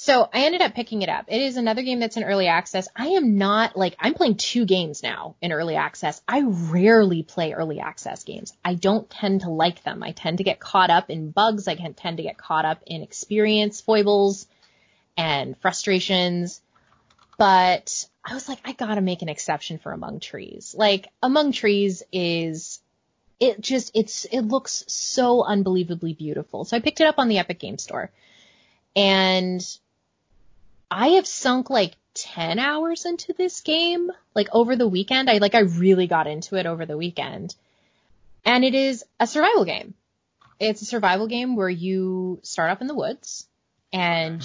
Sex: female